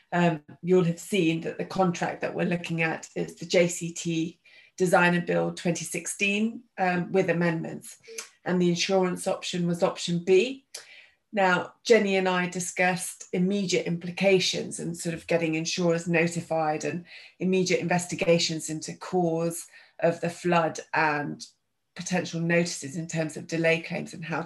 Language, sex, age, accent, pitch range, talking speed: English, female, 30-49, British, 170-185 Hz, 145 wpm